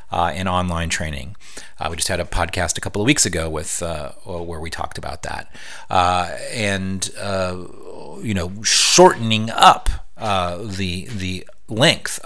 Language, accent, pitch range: English, American, 85-105 Hz